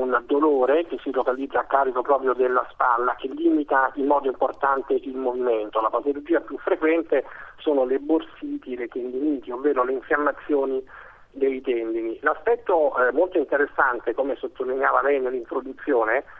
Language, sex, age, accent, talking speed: Italian, male, 50-69, native, 145 wpm